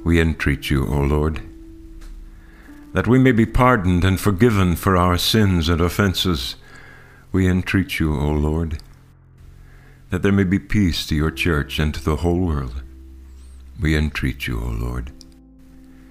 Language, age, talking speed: English, 60-79, 150 wpm